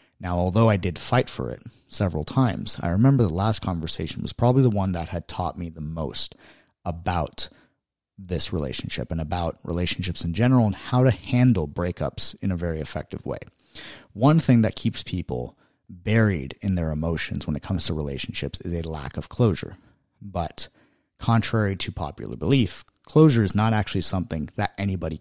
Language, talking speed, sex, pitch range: English, 175 wpm, male, 85-110 Hz